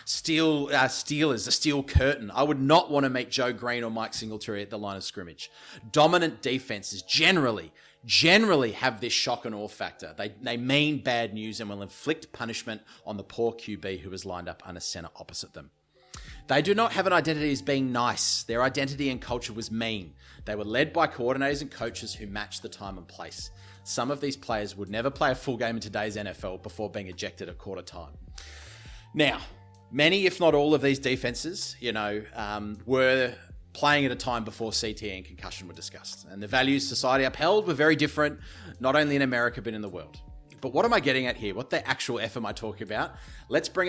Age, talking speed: 30-49, 215 wpm